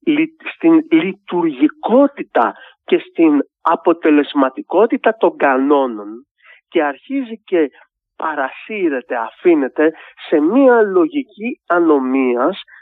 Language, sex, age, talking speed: Greek, male, 40-59, 75 wpm